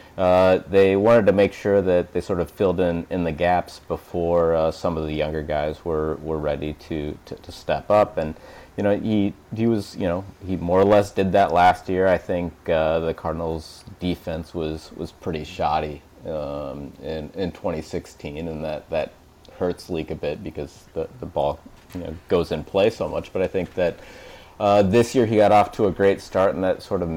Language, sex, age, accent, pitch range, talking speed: English, male, 30-49, American, 80-100 Hz, 210 wpm